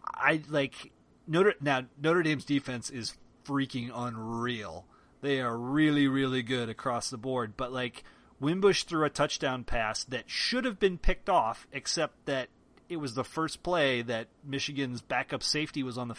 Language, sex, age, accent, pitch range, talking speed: English, male, 30-49, American, 125-150 Hz, 165 wpm